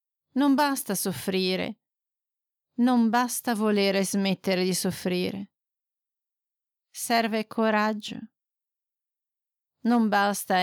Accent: native